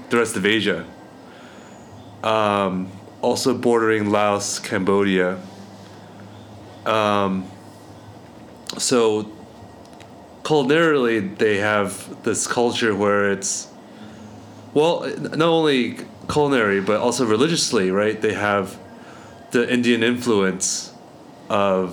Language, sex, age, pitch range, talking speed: English, male, 30-49, 95-110 Hz, 90 wpm